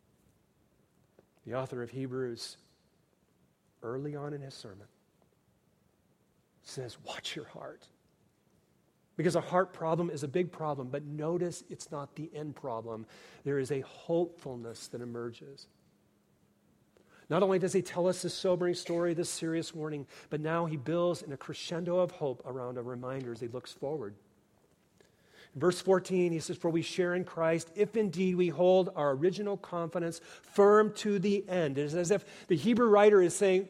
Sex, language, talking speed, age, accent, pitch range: male, English, 160 wpm, 40-59, American, 135-180 Hz